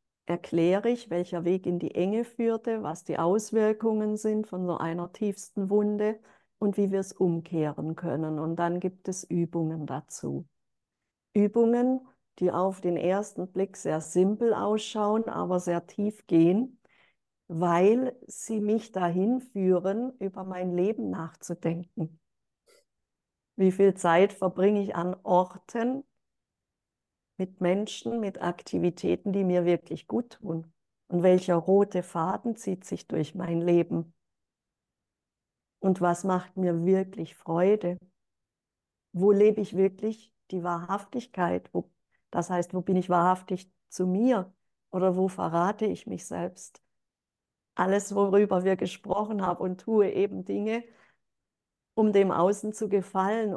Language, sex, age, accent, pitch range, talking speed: German, female, 50-69, German, 175-210 Hz, 130 wpm